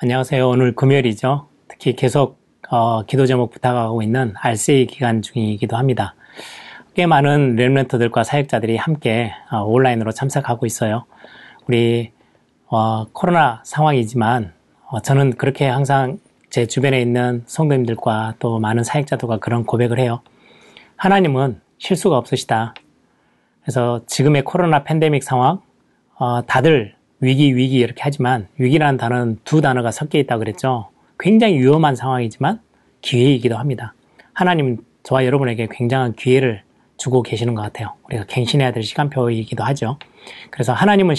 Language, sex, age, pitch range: Korean, male, 30-49, 115-140 Hz